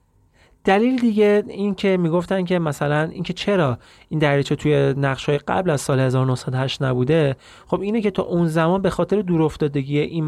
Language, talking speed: Persian, 170 wpm